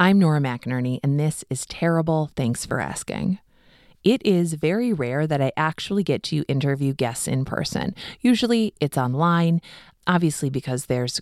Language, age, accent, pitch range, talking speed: English, 30-49, American, 140-195 Hz, 155 wpm